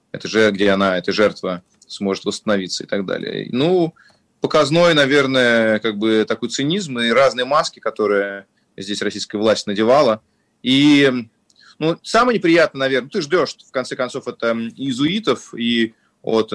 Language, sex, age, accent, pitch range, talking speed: Russian, male, 30-49, native, 100-120 Hz, 140 wpm